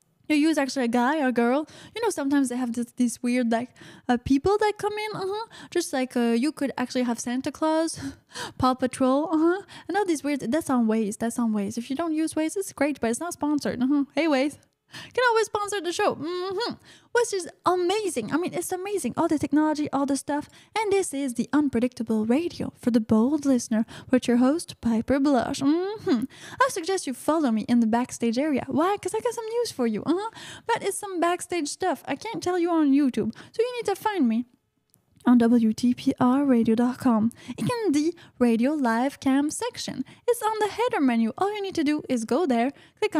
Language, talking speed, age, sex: English, 210 wpm, 10-29, female